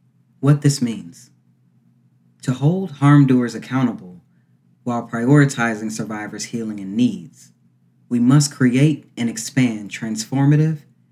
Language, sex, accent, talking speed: English, male, American, 110 wpm